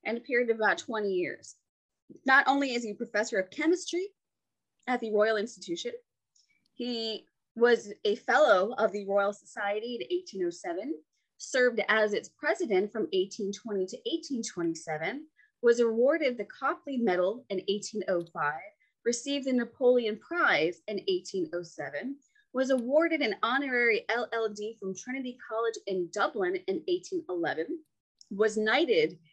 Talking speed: 130 wpm